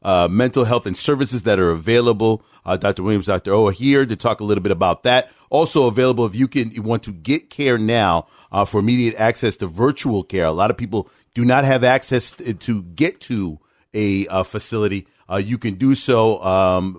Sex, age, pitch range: male, 40-59, 95-120 Hz